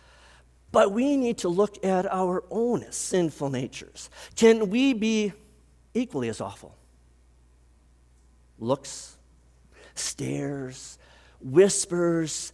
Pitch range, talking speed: 125-195 Hz, 90 wpm